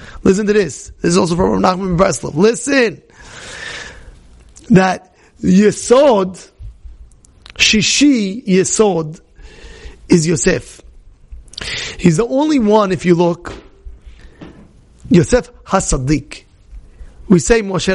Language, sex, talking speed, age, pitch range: English, male, 95 wpm, 30-49, 145-210 Hz